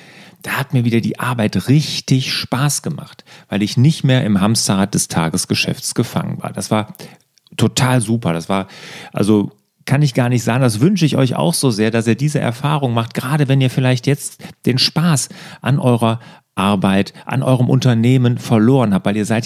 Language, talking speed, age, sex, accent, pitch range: German, 190 wpm, 40-59, male, German, 115-150 Hz